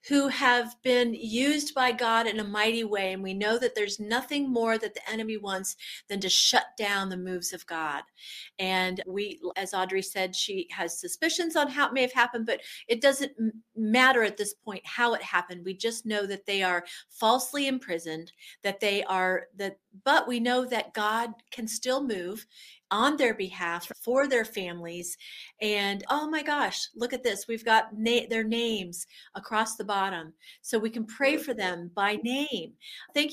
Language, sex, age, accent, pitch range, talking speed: English, female, 40-59, American, 195-240 Hz, 185 wpm